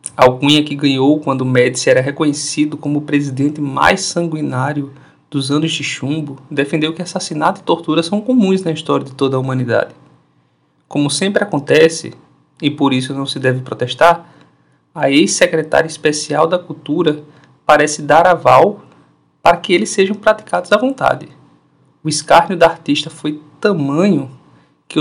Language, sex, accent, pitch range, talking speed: Portuguese, male, Brazilian, 135-170 Hz, 145 wpm